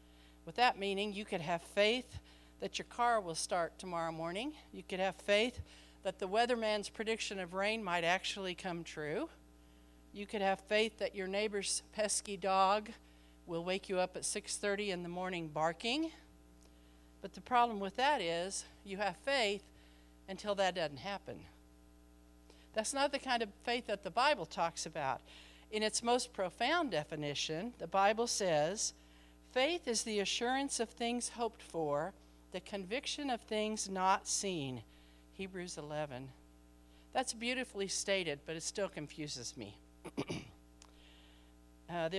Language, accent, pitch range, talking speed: English, American, 150-215 Hz, 150 wpm